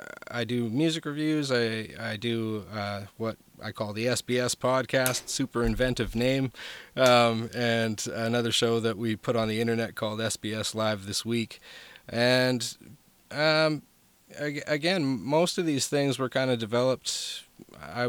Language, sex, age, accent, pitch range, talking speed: English, male, 30-49, American, 110-125 Hz, 145 wpm